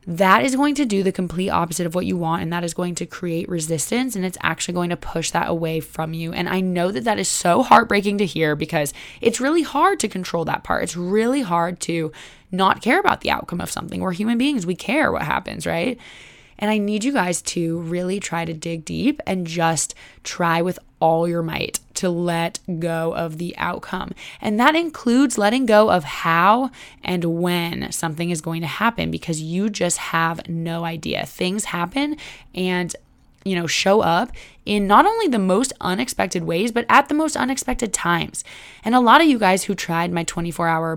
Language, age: English, 20-39